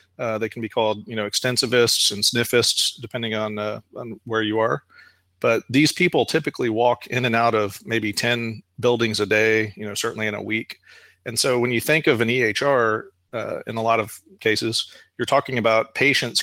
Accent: American